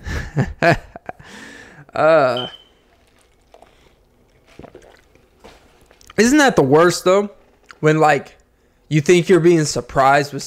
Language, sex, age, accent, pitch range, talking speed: English, male, 20-39, American, 135-170 Hz, 80 wpm